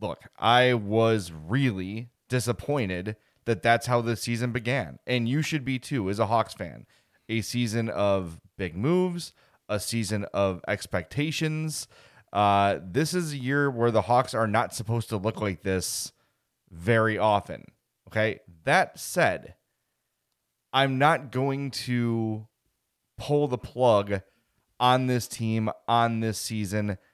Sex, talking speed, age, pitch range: male, 135 wpm, 30-49, 105-130 Hz